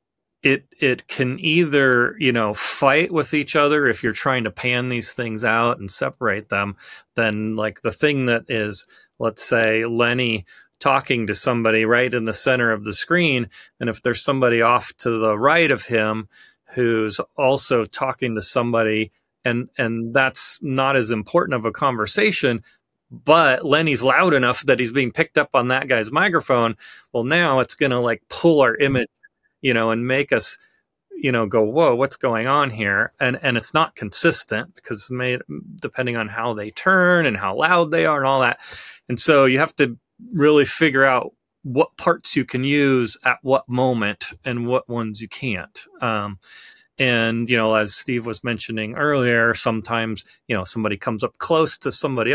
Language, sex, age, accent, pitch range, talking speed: English, male, 30-49, American, 110-135 Hz, 180 wpm